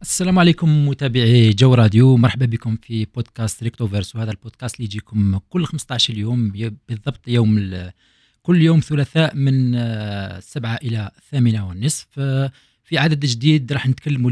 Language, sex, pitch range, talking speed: Arabic, male, 110-135 Hz, 140 wpm